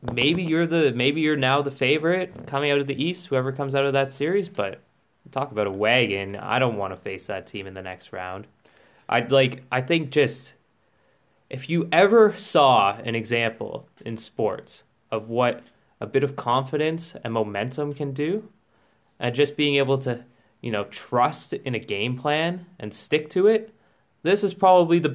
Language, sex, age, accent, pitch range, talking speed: English, male, 20-39, American, 115-150 Hz, 185 wpm